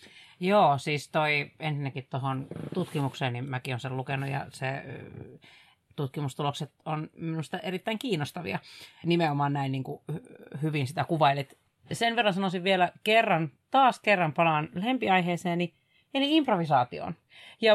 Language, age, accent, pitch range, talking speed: Finnish, 30-49, native, 150-220 Hz, 125 wpm